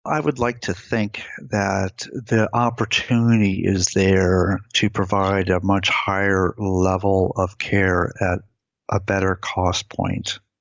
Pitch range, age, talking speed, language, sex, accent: 95-110 Hz, 50-69, 130 wpm, English, male, American